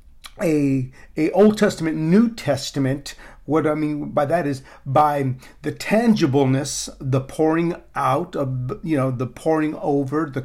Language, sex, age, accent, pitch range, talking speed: English, male, 50-69, American, 135-170 Hz, 145 wpm